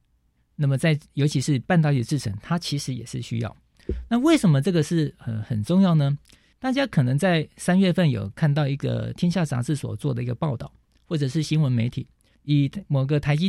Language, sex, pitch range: Chinese, male, 125-165 Hz